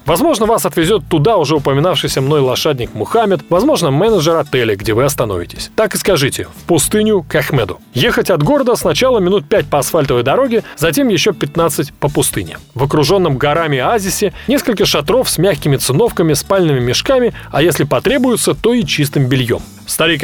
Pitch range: 135-195 Hz